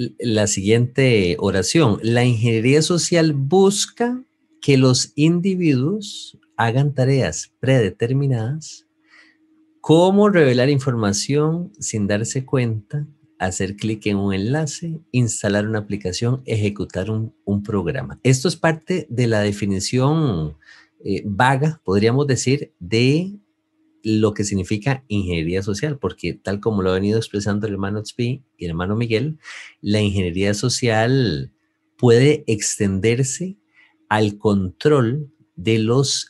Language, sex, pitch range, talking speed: English, male, 105-150 Hz, 115 wpm